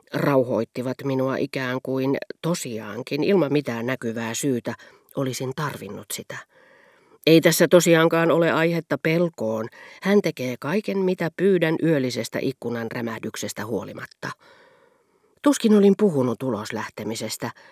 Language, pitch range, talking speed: Finnish, 125-170 Hz, 110 wpm